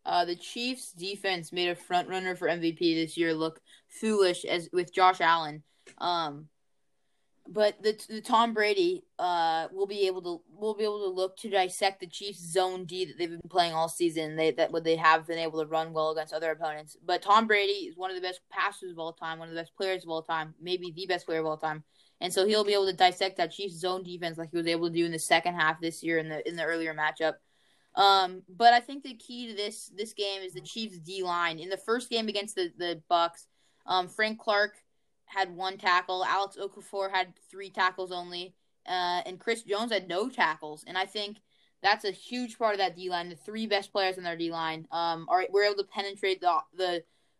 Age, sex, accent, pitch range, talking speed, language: 10-29, female, American, 170-200 Hz, 230 wpm, English